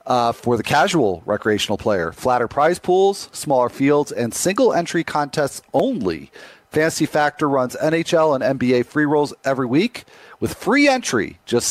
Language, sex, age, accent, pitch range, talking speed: English, male, 40-59, American, 110-145 Hz, 150 wpm